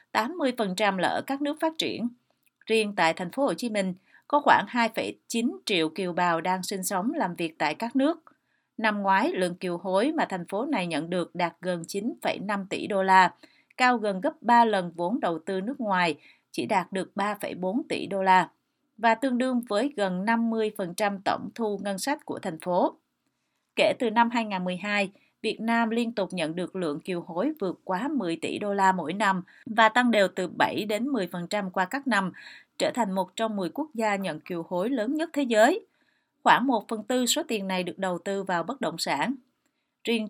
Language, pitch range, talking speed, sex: Vietnamese, 185-240 Hz, 200 wpm, female